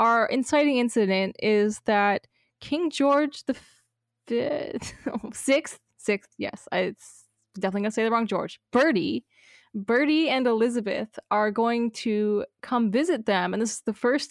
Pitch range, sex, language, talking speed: 210-280 Hz, female, English, 145 wpm